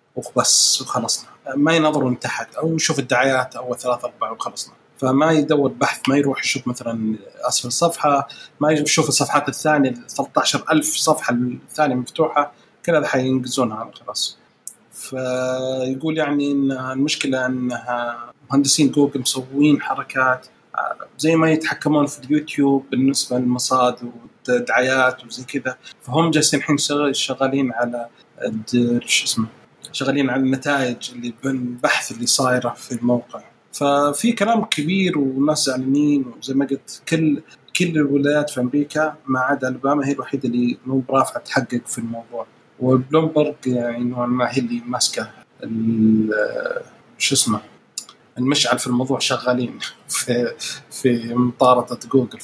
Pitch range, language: 125-145 Hz, Arabic